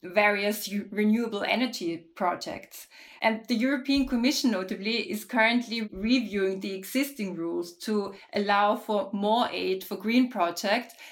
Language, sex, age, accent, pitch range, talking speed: English, female, 20-39, German, 195-225 Hz, 125 wpm